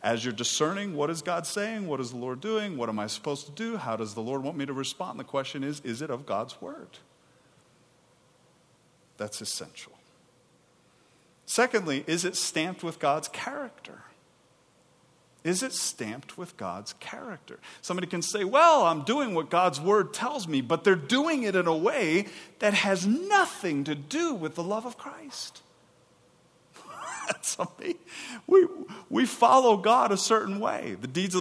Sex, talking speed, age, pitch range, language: male, 165 wpm, 40-59, 140-210 Hz, English